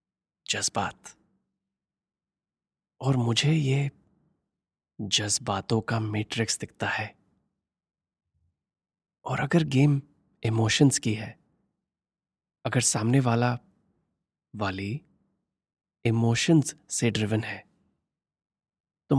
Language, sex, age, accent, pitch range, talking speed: Hindi, male, 30-49, native, 105-135 Hz, 75 wpm